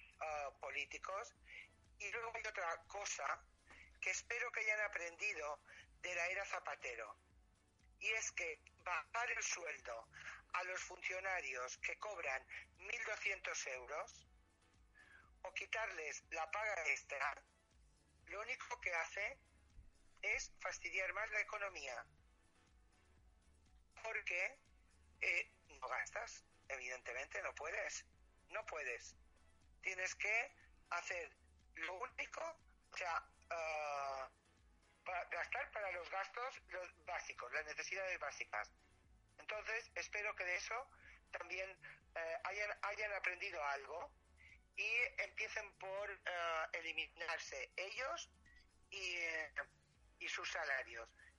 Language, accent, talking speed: Spanish, Spanish, 100 wpm